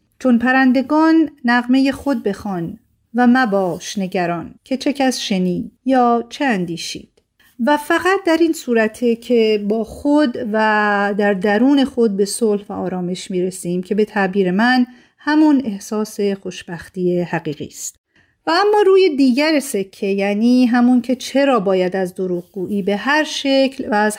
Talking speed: 145 wpm